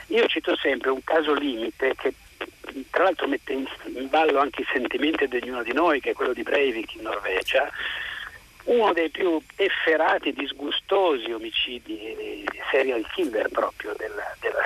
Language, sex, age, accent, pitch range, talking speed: Italian, male, 50-69, native, 320-450 Hz, 160 wpm